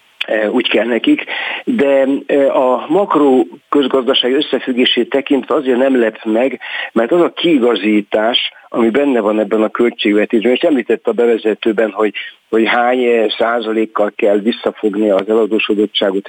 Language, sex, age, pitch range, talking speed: Hungarian, male, 60-79, 110-135 Hz, 125 wpm